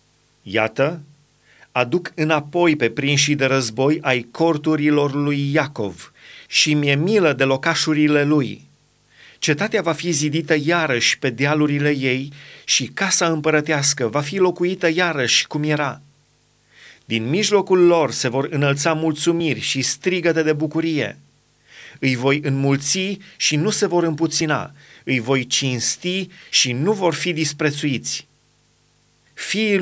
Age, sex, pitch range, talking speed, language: 30-49, male, 140-170 Hz, 125 wpm, Romanian